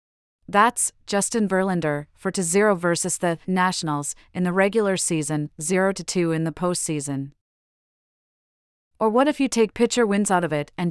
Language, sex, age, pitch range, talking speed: English, female, 30-49, 160-200 Hz, 155 wpm